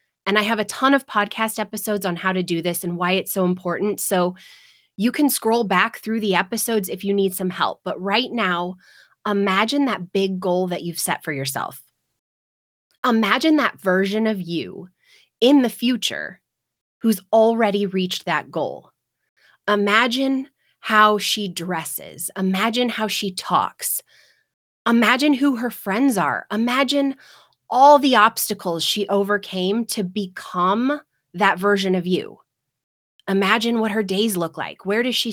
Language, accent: English, American